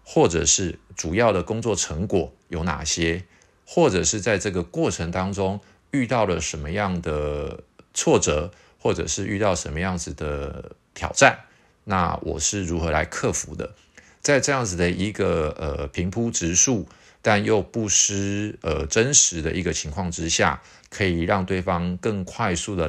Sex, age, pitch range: male, 50-69, 80-100 Hz